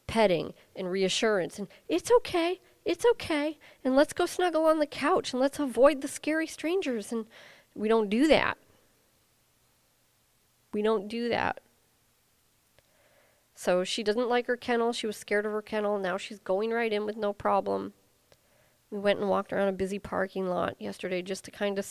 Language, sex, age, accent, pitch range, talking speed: English, female, 40-59, American, 185-245 Hz, 175 wpm